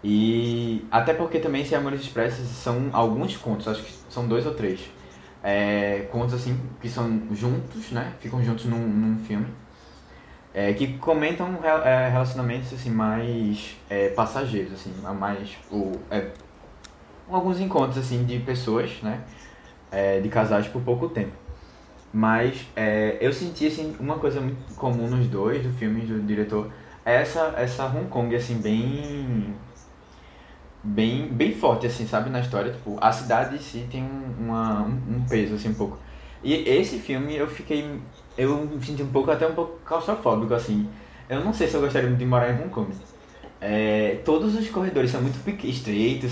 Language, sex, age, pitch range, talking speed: Portuguese, male, 20-39, 105-130 Hz, 170 wpm